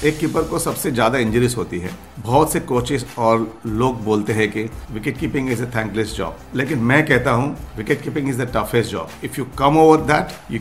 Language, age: Hindi, 50-69